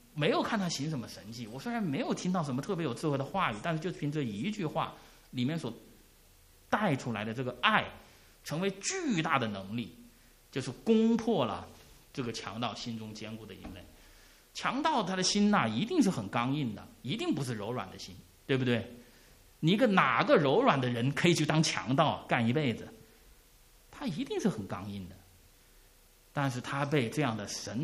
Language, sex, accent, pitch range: English, male, Chinese, 110-155 Hz